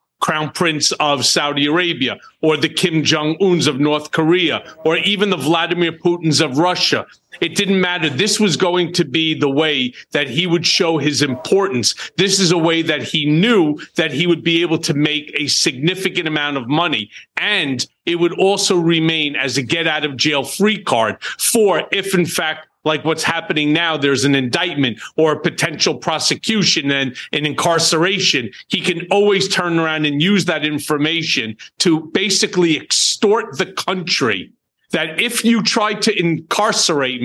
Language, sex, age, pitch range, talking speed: English, male, 40-59, 150-185 Hz, 170 wpm